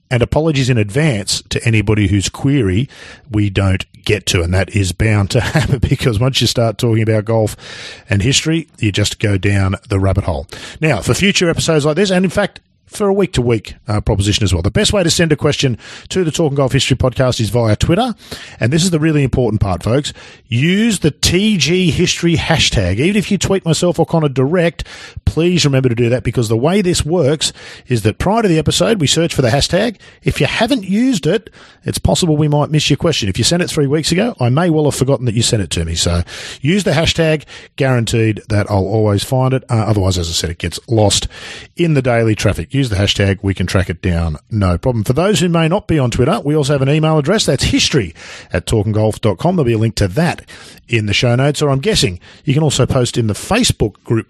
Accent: Australian